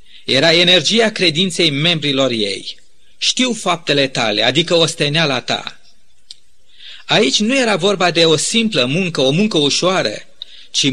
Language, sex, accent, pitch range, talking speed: Romanian, male, native, 140-185 Hz, 130 wpm